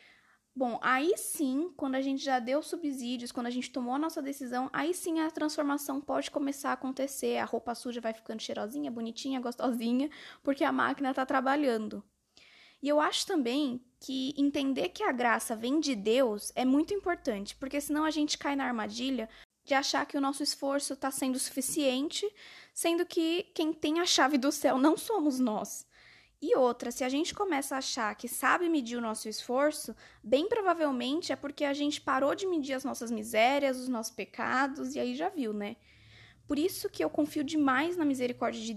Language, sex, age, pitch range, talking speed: Portuguese, female, 10-29, 245-305 Hz, 190 wpm